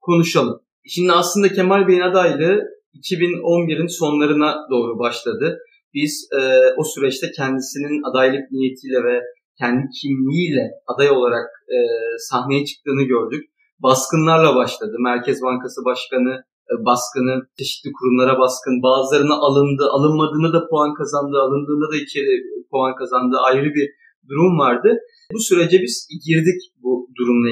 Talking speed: 125 wpm